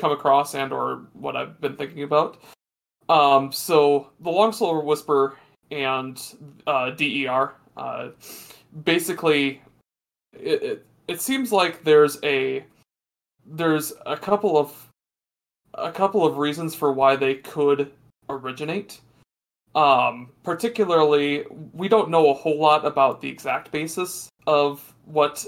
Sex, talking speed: male, 125 wpm